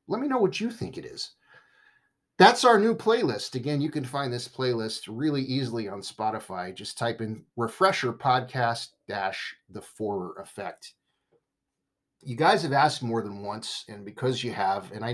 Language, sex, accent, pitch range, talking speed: English, male, American, 115-145 Hz, 175 wpm